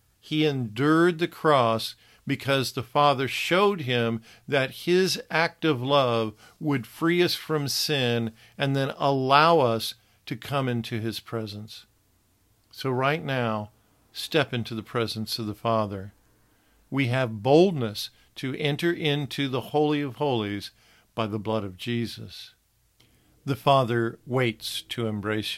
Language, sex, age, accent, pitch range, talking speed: English, male, 50-69, American, 110-140 Hz, 135 wpm